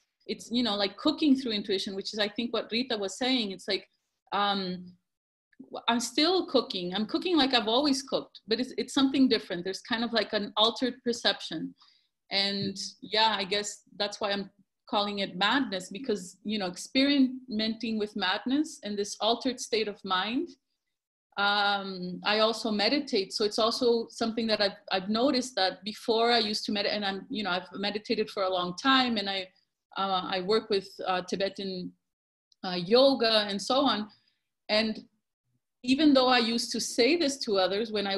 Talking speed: 180 wpm